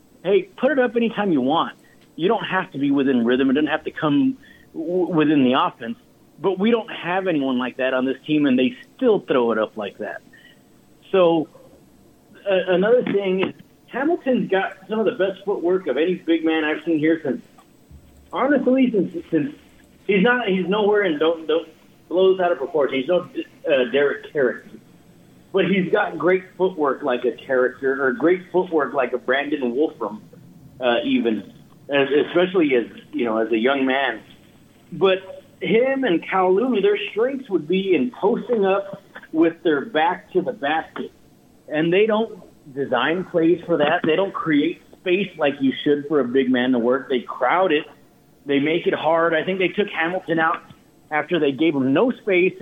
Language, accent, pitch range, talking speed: English, American, 150-205 Hz, 185 wpm